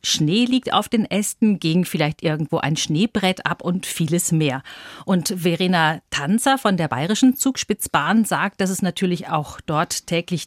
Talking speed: 160 wpm